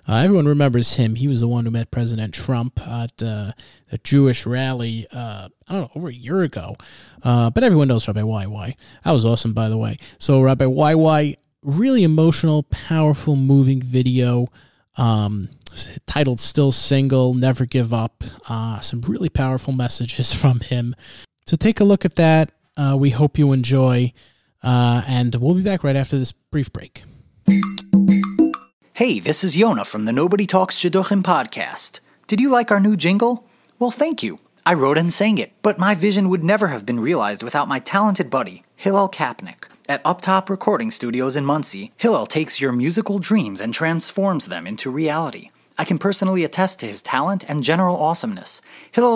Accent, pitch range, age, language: American, 125-195 Hz, 30-49, English